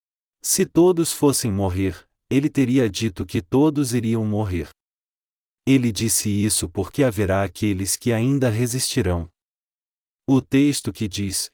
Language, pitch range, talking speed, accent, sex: Portuguese, 100-130 Hz, 125 wpm, Brazilian, male